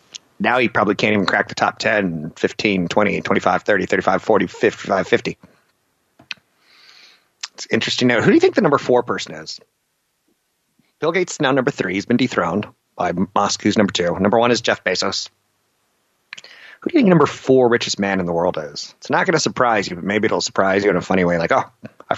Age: 30-49